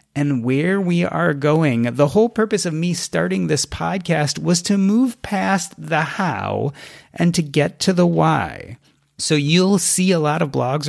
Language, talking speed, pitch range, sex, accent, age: English, 175 wpm, 125-185 Hz, male, American, 30-49